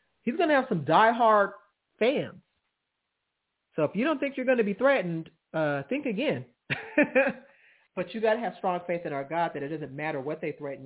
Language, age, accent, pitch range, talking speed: English, 40-59, American, 160-220 Hz, 205 wpm